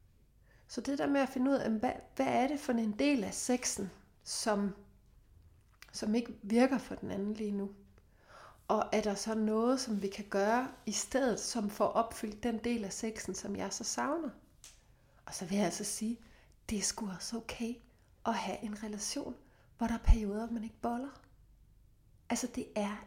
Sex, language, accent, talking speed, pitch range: female, Danish, native, 185 wpm, 205-250 Hz